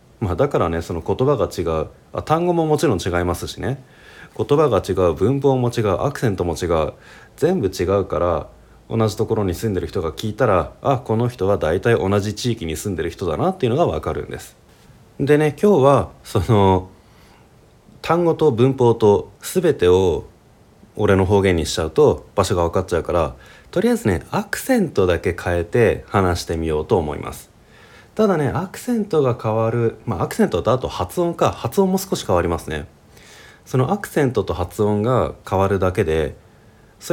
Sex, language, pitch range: male, Japanese, 90-135 Hz